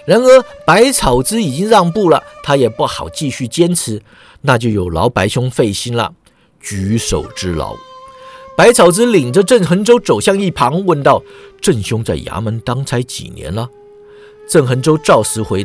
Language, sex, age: Chinese, male, 50-69